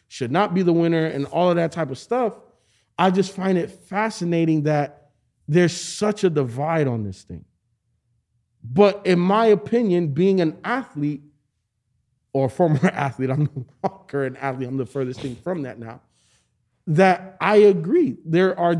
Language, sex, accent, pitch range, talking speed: English, male, American, 140-180 Hz, 165 wpm